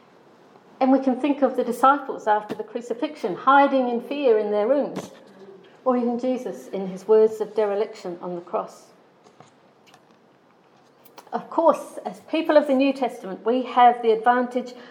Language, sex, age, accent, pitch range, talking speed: English, female, 50-69, British, 215-285 Hz, 155 wpm